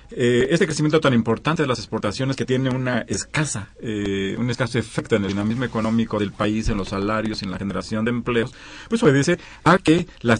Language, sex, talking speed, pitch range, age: Spanish, male, 200 wpm, 105-135 Hz, 40-59